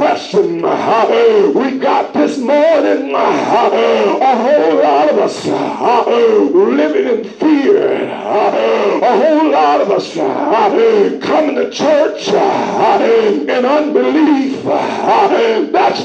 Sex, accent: male, American